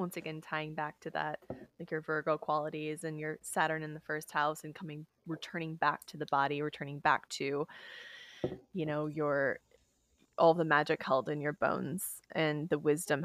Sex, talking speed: female, 180 wpm